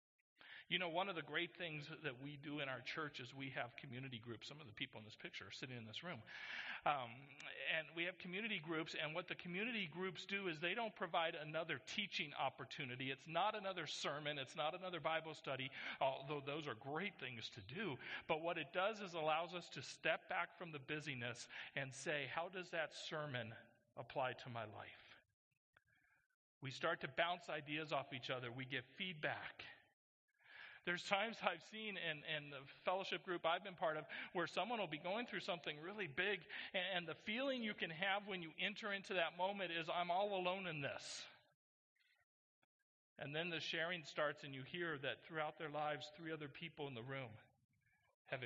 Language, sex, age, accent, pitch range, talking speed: English, male, 50-69, American, 130-175 Hz, 195 wpm